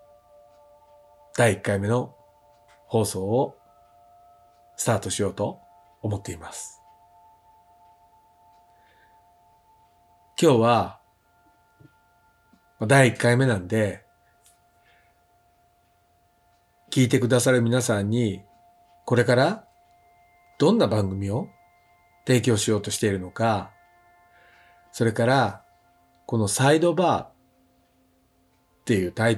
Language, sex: Japanese, male